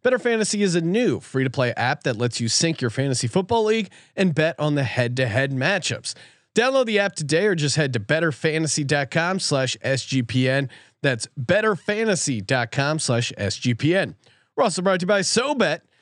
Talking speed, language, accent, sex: 155 wpm, English, American, male